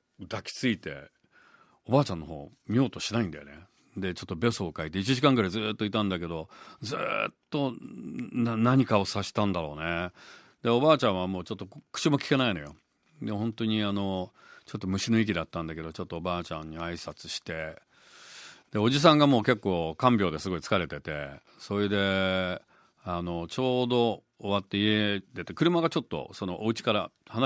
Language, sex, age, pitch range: Japanese, male, 40-59, 90-120 Hz